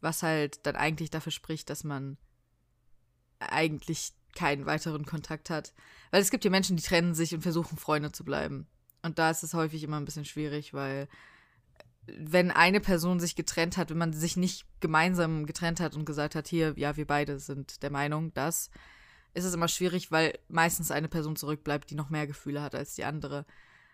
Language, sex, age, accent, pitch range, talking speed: German, female, 20-39, German, 150-180 Hz, 195 wpm